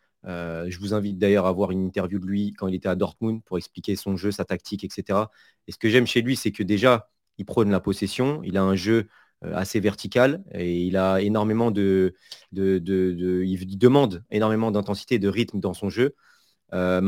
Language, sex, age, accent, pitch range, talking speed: French, male, 30-49, French, 100-130 Hz, 210 wpm